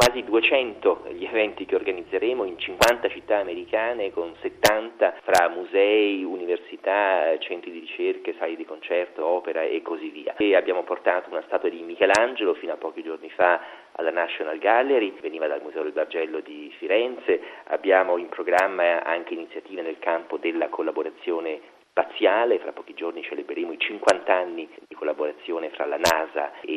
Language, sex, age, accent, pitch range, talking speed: Italian, male, 40-59, native, 355-445 Hz, 155 wpm